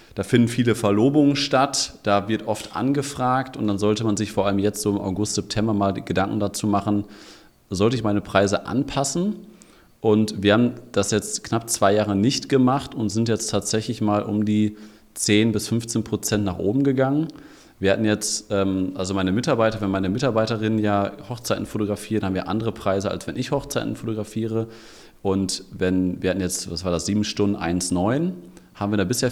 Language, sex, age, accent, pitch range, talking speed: German, male, 30-49, German, 95-115 Hz, 185 wpm